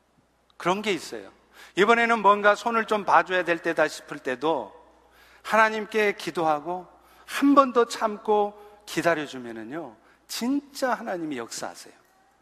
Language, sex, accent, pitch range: Korean, male, native, 200-260 Hz